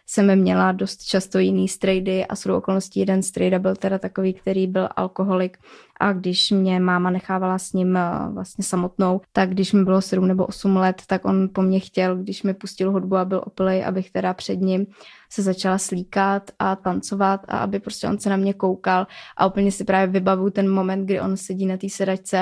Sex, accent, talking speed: female, native, 205 wpm